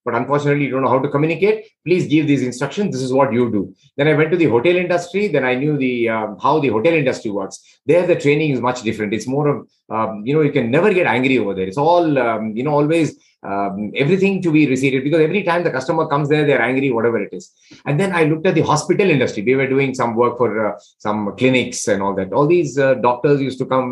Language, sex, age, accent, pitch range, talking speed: English, male, 30-49, Indian, 115-160 Hz, 260 wpm